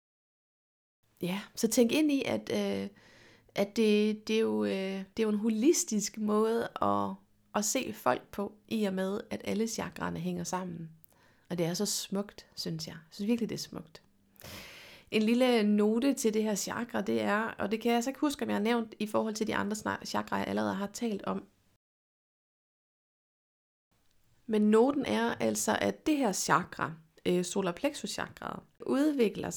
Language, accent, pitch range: Danish, native, 180-230 Hz